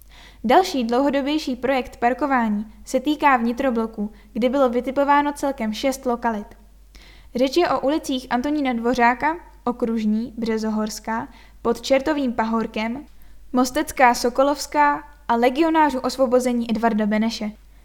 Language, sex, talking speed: Czech, female, 100 wpm